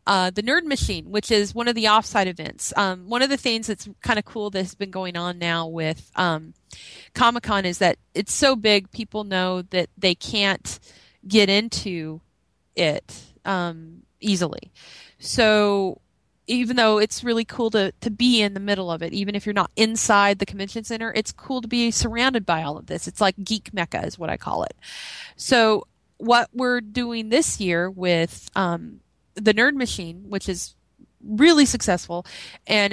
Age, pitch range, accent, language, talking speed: 30-49, 185-230 Hz, American, English, 180 wpm